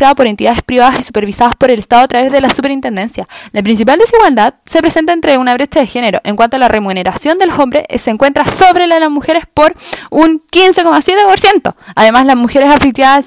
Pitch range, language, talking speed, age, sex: 245-315 Hz, Spanish, 210 wpm, 20-39, female